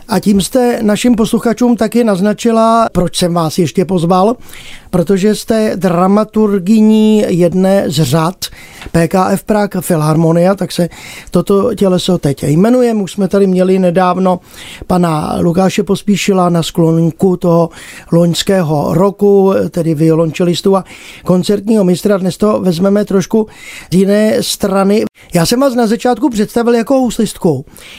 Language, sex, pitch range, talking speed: Czech, male, 175-215 Hz, 130 wpm